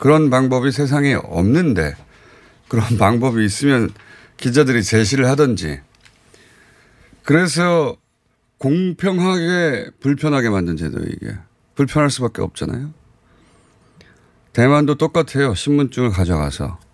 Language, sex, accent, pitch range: Korean, male, native, 95-140 Hz